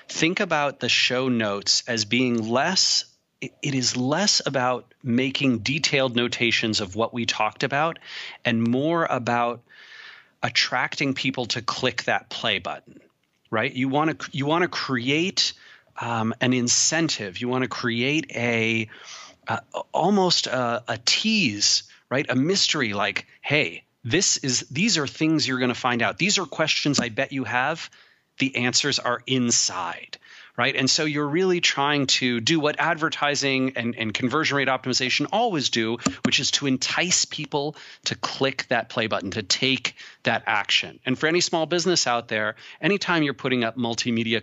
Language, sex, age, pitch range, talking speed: English, male, 30-49, 115-145 Hz, 165 wpm